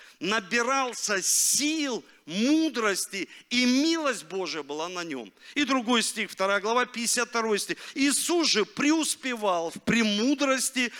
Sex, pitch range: male, 160-235 Hz